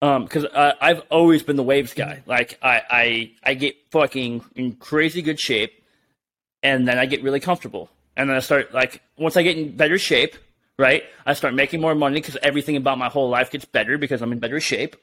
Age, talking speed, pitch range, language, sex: 30-49, 215 wpm, 135-175 Hz, English, male